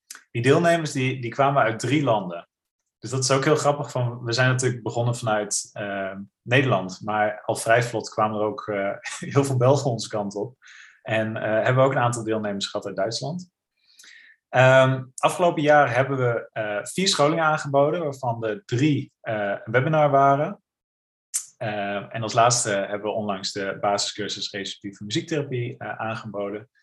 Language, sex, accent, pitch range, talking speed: Dutch, male, Dutch, 105-140 Hz, 165 wpm